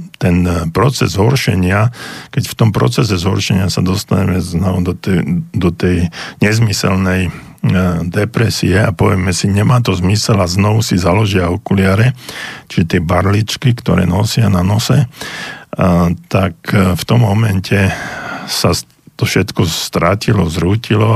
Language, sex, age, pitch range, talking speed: Slovak, male, 50-69, 90-110 Hz, 130 wpm